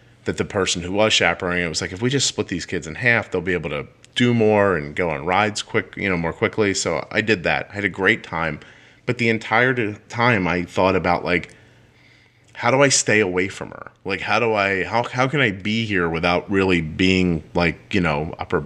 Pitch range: 90-120 Hz